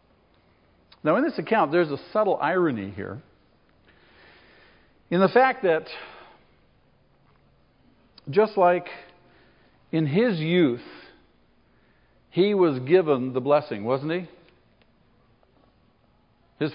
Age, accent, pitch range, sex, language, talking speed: 50-69, American, 115-155 Hz, male, English, 95 wpm